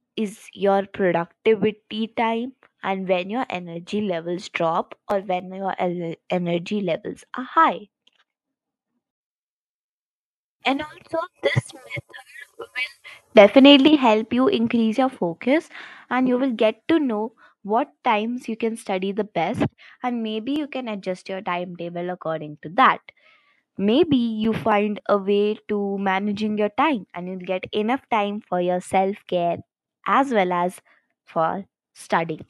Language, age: English, 20-39